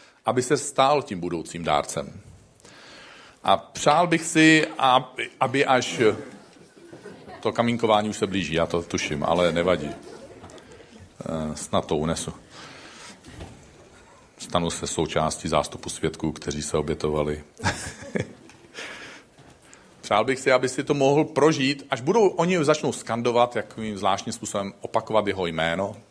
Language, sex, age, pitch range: Czech, male, 50-69, 95-135 Hz